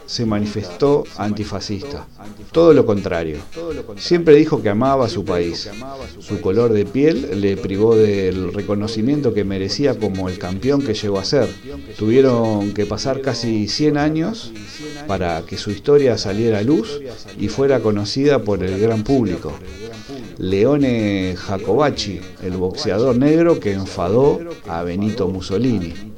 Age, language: 50-69, English